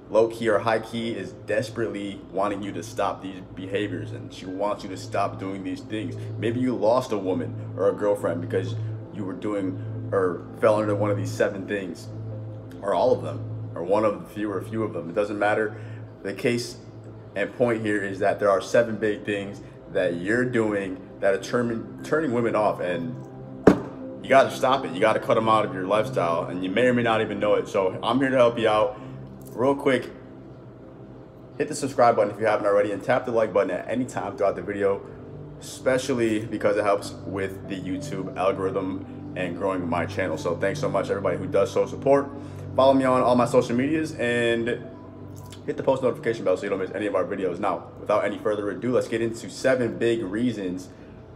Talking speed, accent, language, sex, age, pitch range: 215 wpm, American, English, male, 30-49, 100-125 Hz